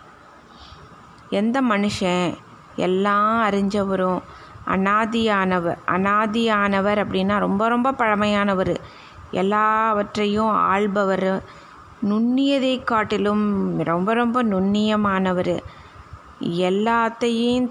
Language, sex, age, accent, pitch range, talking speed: Tamil, female, 20-39, native, 190-230 Hz, 60 wpm